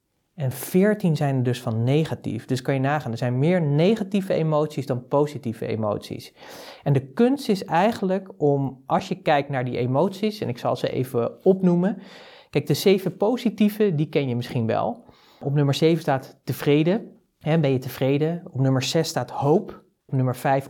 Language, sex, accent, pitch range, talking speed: Dutch, male, Dutch, 125-165 Hz, 180 wpm